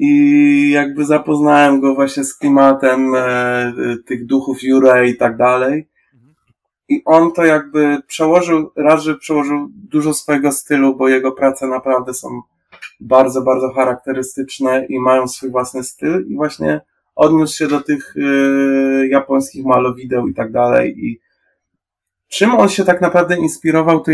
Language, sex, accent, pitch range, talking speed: Polish, male, native, 130-155 Hz, 140 wpm